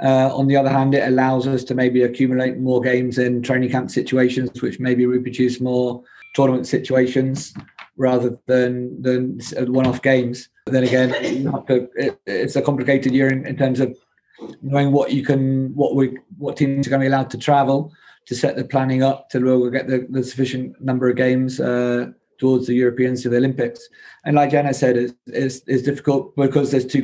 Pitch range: 125-135 Hz